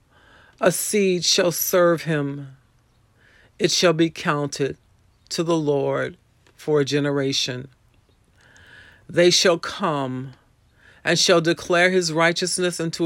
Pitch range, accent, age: 115-155 Hz, American, 50-69